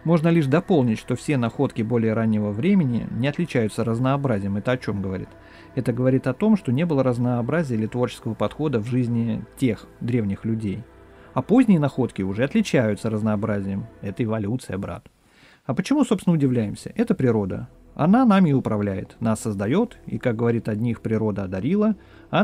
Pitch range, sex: 110-145 Hz, male